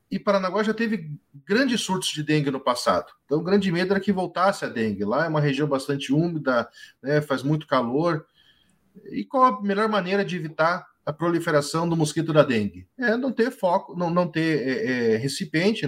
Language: Portuguese